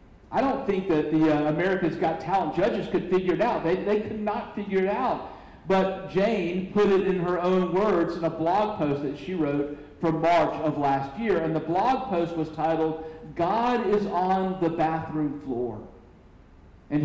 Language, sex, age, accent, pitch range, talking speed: English, male, 50-69, American, 145-190 Hz, 190 wpm